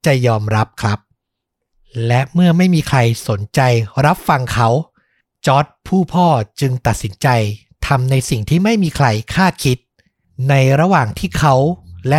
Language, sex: Thai, male